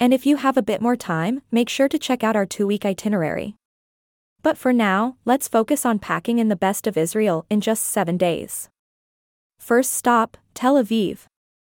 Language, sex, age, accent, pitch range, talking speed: English, female, 20-39, American, 195-245 Hz, 185 wpm